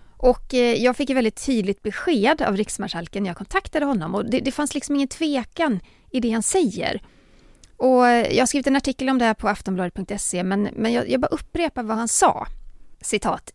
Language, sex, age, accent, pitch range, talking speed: Swedish, female, 30-49, native, 180-260 Hz, 195 wpm